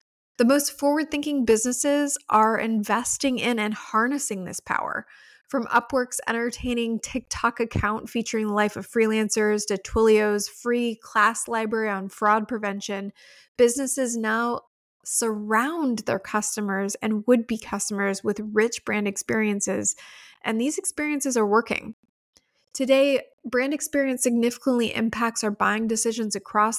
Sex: female